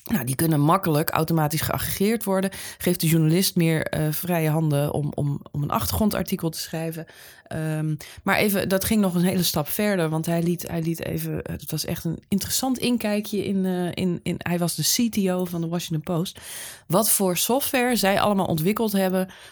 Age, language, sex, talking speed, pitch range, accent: 20-39, Dutch, female, 170 wpm, 155-195 Hz, Dutch